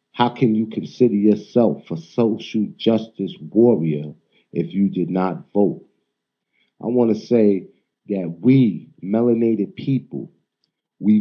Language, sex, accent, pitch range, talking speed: English, male, American, 100-120 Hz, 125 wpm